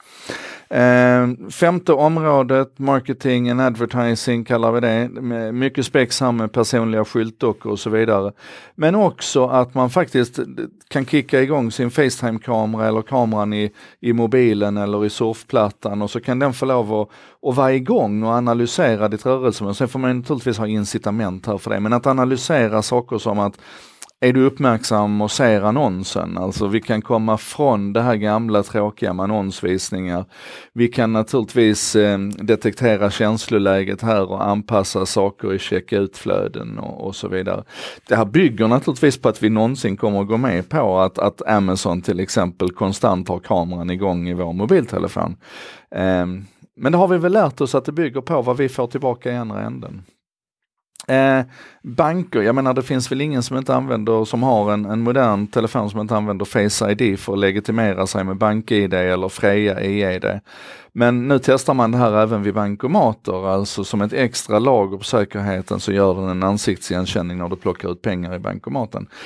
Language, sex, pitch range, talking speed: Swedish, male, 100-125 Hz, 175 wpm